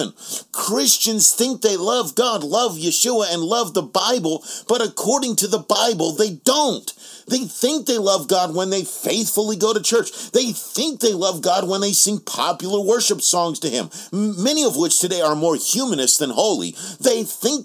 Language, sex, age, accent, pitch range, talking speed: English, male, 40-59, American, 190-235 Hz, 185 wpm